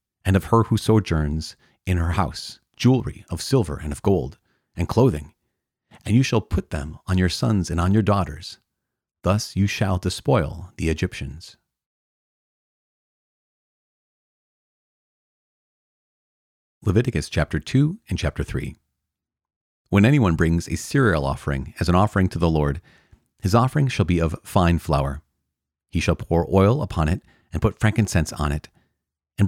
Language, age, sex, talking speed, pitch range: English, 40-59, male, 145 wpm, 75-105 Hz